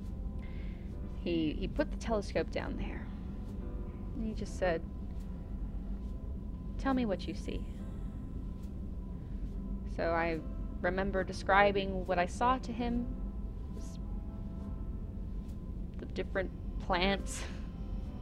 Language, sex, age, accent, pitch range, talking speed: English, female, 20-39, American, 85-100 Hz, 90 wpm